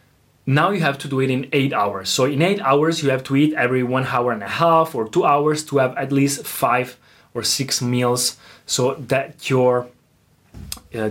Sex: male